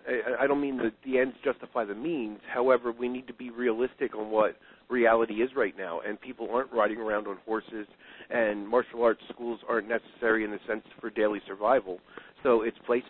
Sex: male